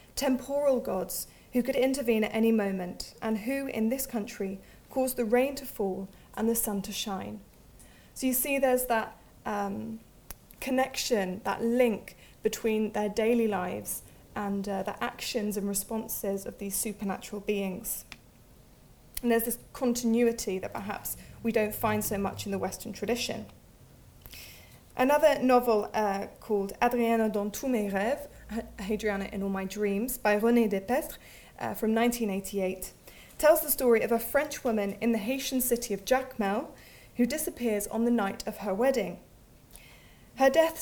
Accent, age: British, 20-39